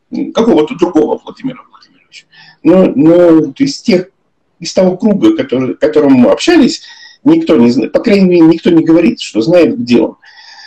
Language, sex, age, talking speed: Russian, male, 50-69, 165 wpm